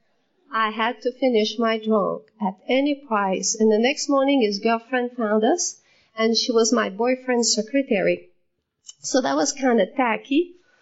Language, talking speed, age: English, 160 wpm, 40-59